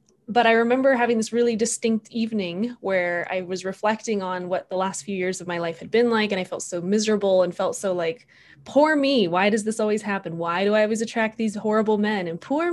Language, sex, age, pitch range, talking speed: English, female, 20-39, 190-235 Hz, 235 wpm